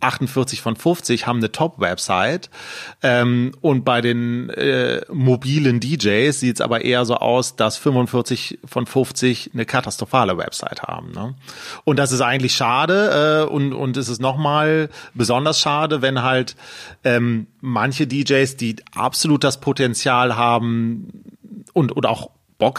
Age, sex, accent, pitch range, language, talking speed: 40-59, male, German, 120-140 Hz, German, 140 wpm